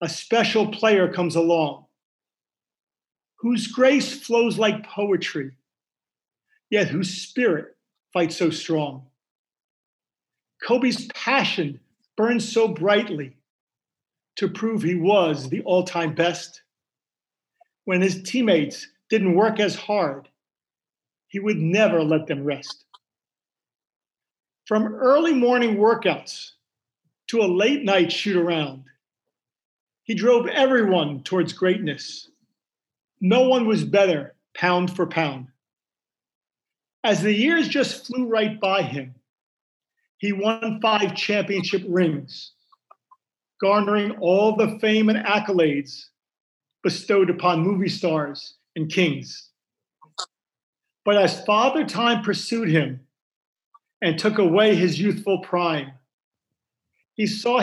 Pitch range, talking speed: 170-225 Hz, 105 wpm